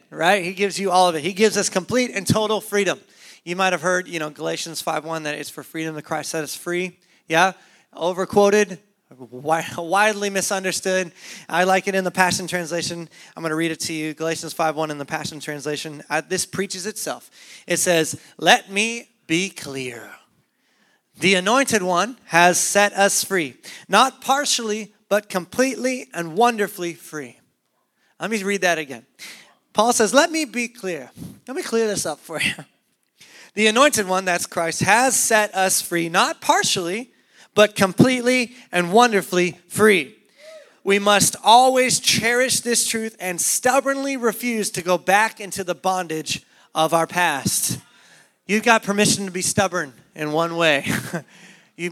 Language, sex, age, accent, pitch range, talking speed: English, male, 30-49, American, 165-210 Hz, 165 wpm